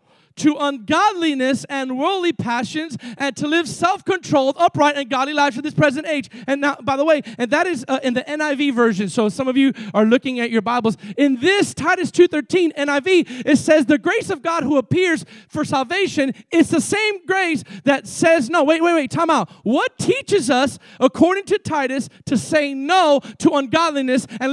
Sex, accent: male, American